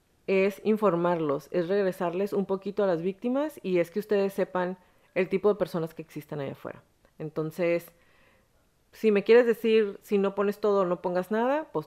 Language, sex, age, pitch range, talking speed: Spanish, female, 30-49, 155-210 Hz, 180 wpm